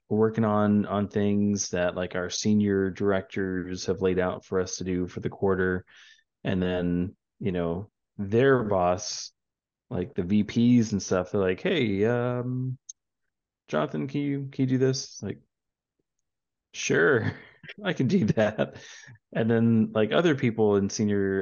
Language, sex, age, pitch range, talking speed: English, male, 30-49, 90-110 Hz, 155 wpm